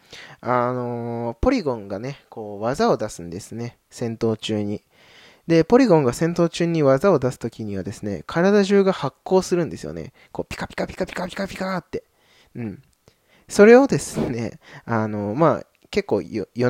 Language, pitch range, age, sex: Japanese, 110-165 Hz, 20-39, male